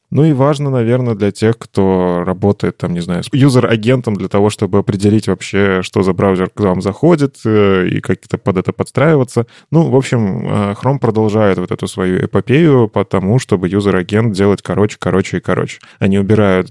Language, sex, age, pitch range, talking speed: Russian, male, 20-39, 95-120 Hz, 170 wpm